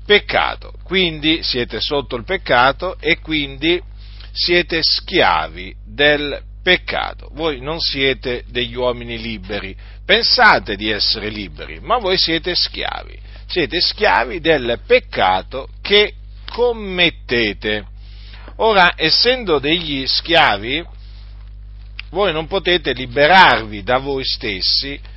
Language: Italian